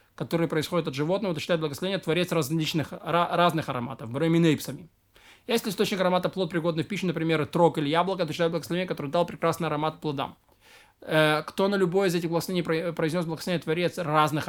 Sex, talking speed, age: male, 165 wpm, 20-39